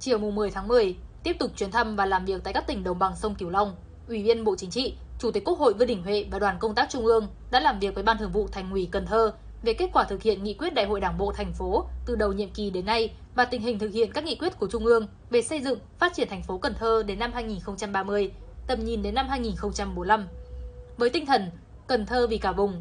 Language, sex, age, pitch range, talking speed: Vietnamese, female, 10-29, 200-245 Hz, 270 wpm